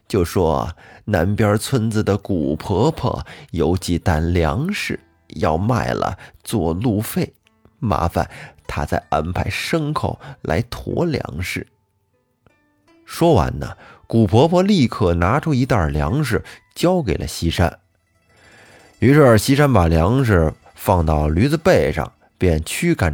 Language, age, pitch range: Chinese, 30-49, 85-130 Hz